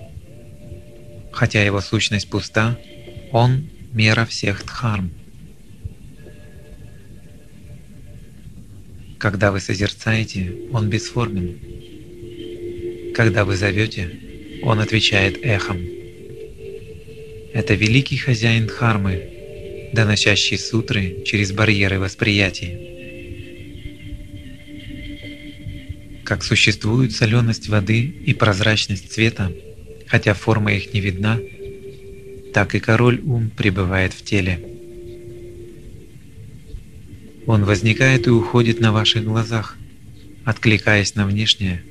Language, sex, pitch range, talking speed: Russian, male, 100-120 Hz, 80 wpm